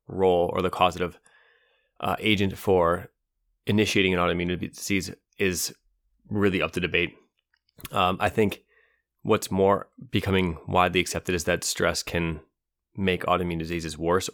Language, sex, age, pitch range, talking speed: English, male, 20-39, 85-100 Hz, 135 wpm